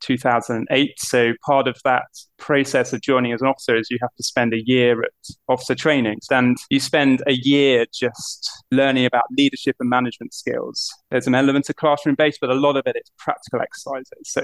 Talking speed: 200 wpm